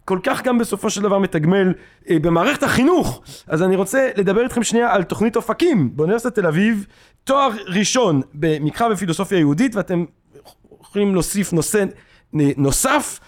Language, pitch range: Hebrew, 165-230 Hz